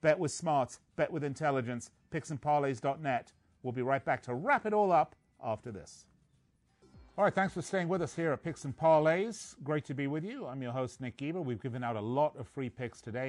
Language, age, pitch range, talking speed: English, 40-59, 110-145 Hz, 220 wpm